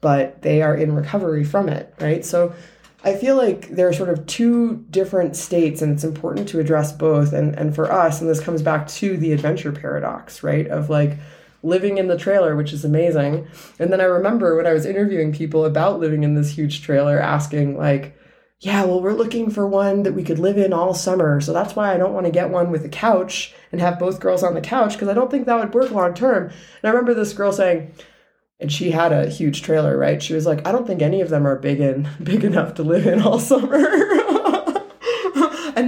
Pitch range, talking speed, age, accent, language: 155-195 Hz, 225 wpm, 20-39, American, English